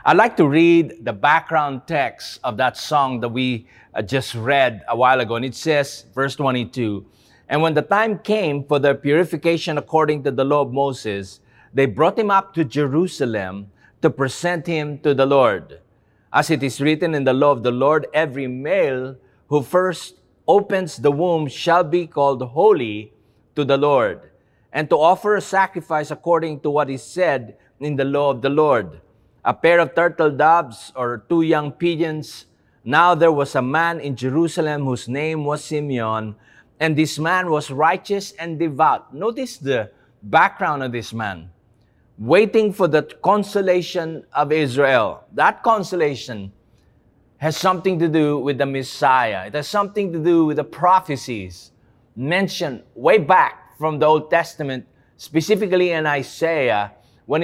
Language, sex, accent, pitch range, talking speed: English, male, Filipino, 130-170 Hz, 160 wpm